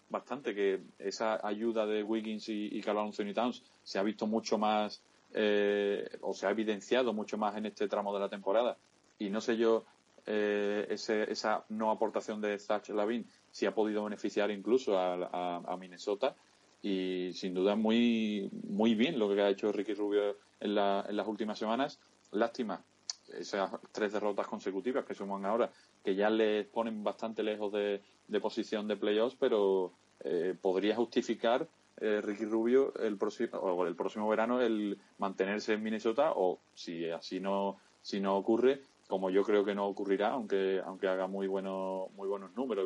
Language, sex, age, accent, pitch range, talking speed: Spanish, male, 30-49, Spanish, 100-110 Hz, 175 wpm